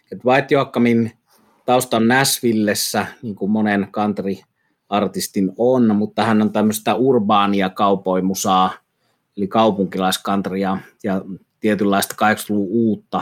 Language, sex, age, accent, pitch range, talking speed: Finnish, male, 30-49, native, 95-110 Hz, 100 wpm